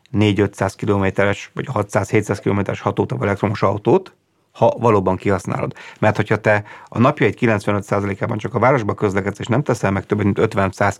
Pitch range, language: 100-120 Hz, Hungarian